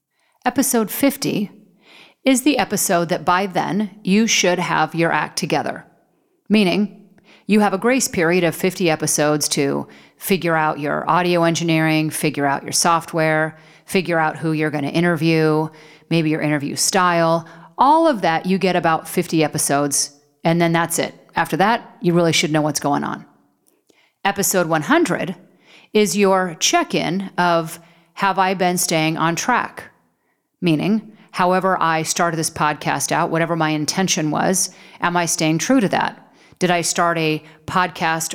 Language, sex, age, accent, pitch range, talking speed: English, female, 40-59, American, 160-195 Hz, 155 wpm